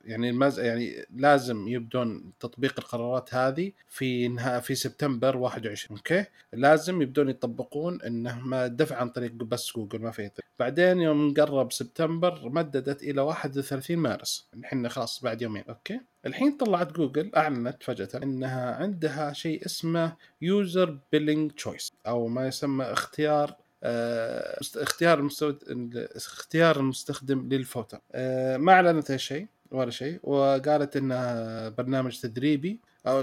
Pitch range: 125-155 Hz